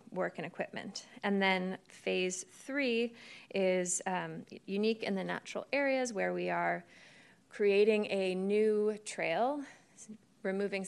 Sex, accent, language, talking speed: female, American, English, 120 wpm